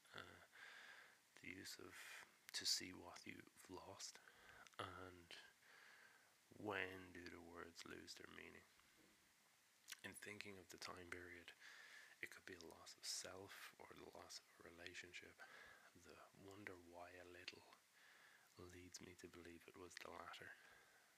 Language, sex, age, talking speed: English, male, 20-39, 140 wpm